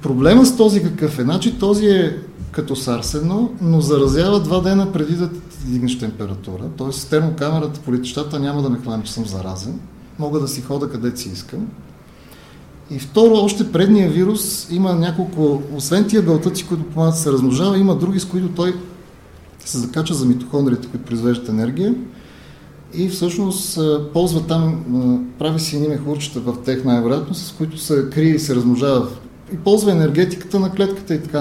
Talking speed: 165 wpm